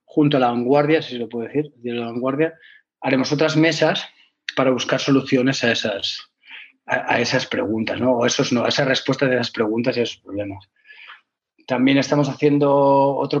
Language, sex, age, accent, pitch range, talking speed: Spanish, male, 30-49, Spanish, 125-150 Hz, 165 wpm